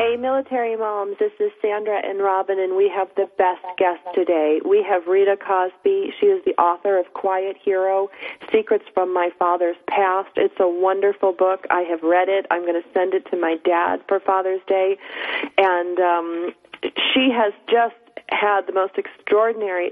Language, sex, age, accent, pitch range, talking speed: English, female, 40-59, American, 185-215 Hz, 180 wpm